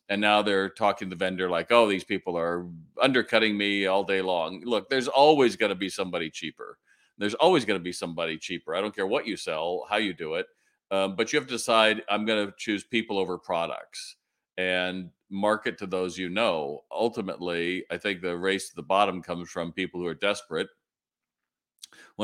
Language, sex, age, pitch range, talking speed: English, male, 50-69, 95-110 Hz, 205 wpm